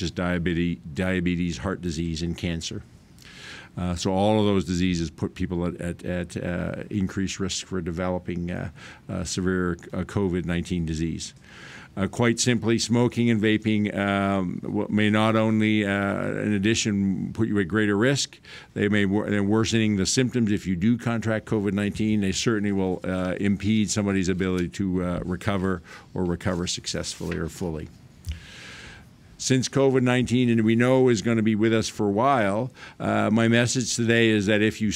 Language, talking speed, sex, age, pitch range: English, 160 wpm, male, 50-69, 95-110 Hz